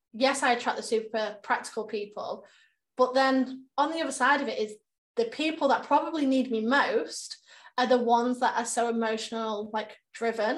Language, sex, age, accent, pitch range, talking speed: English, female, 20-39, British, 225-265 Hz, 180 wpm